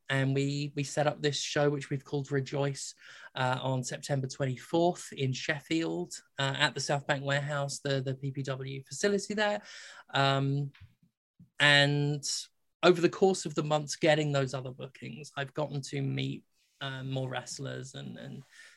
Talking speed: 155 wpm